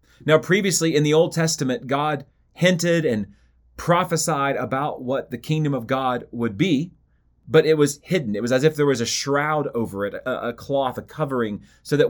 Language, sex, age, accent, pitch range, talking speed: English, male, 30-49, American, 120-155 Hz, 190 wpm